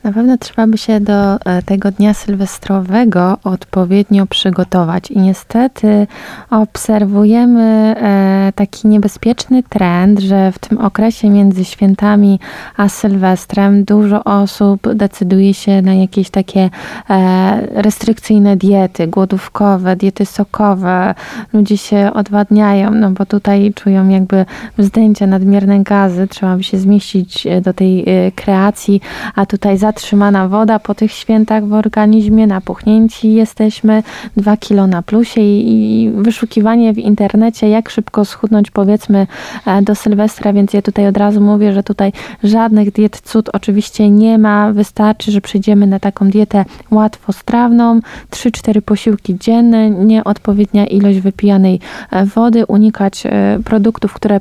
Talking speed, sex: 125 wpm, female